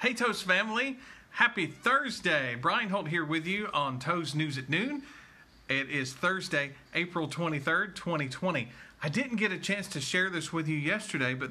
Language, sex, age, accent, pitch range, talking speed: English, male, 40-59, American, 135-180 Hz, 170 wpm